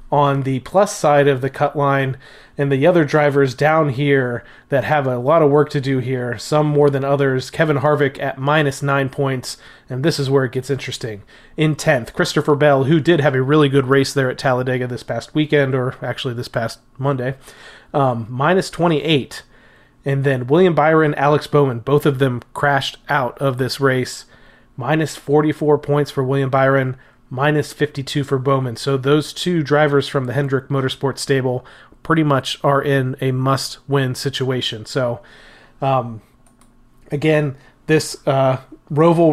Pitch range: 130-150 Hz